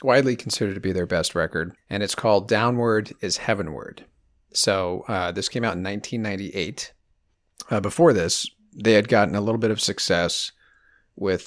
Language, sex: English, male